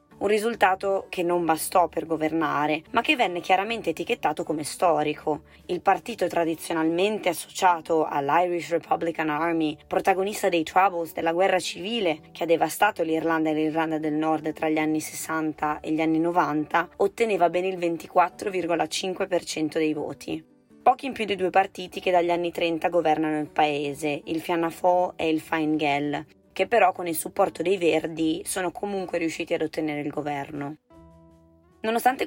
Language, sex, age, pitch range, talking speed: Italian, female, 20-39, 155-180 Hz, 155 wpm